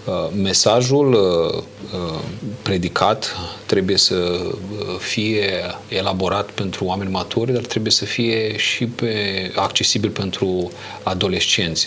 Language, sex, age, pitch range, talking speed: Romanian, male, 30-49, 95-115 Hz, 95 wpm